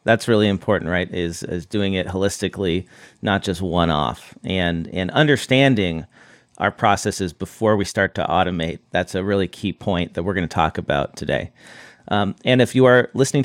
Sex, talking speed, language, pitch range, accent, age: male, 180 wpm, English, 95-120 Hz, American, 40-59